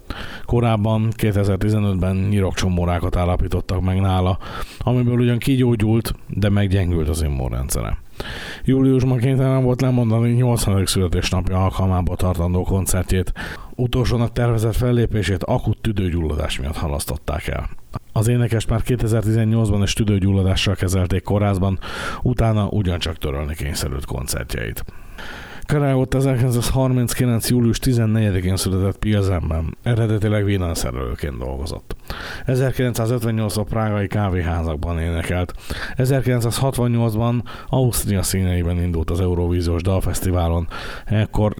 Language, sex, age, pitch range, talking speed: Hungarian, male, 50-69, 90-115 Hz, 90 wpm